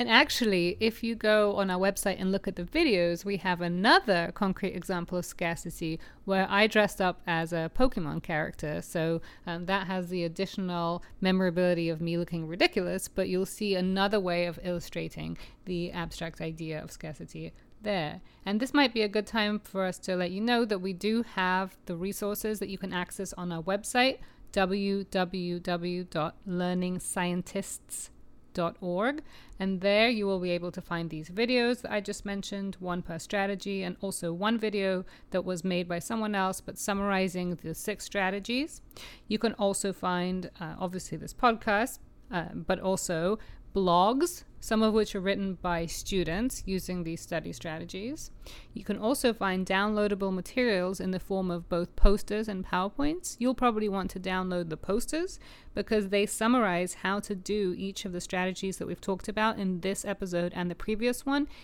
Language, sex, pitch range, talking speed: English, female, 175-205 Hz, 175 wpm